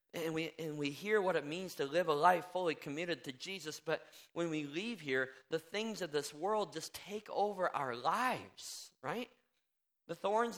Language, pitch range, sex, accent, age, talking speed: English, 150-190 Hz, male, American, 40-59, 195 wpm